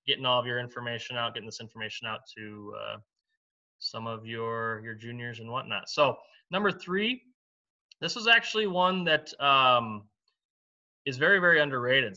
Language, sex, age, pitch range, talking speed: English, male, 20-39, 115-140 Hz, 160 wpm